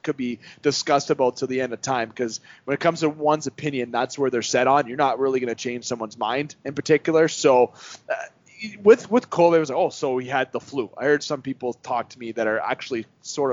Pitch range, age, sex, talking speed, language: 125-165 Hz, 30-49, male, 250 wpm, English